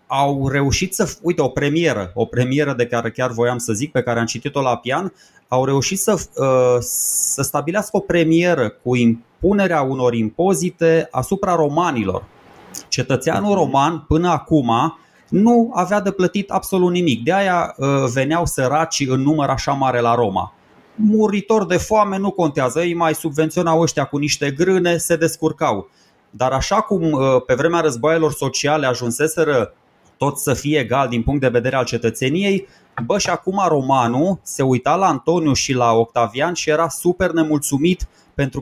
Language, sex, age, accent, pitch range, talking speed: Romanian, male, 20-39, native, 125-170 Hz, 155 wpm